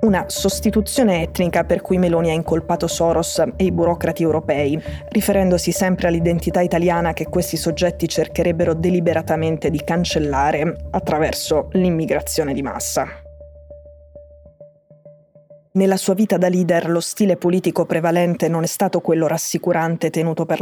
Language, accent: Italian, native